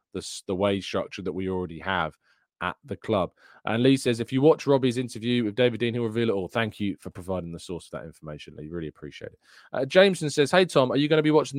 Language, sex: English, male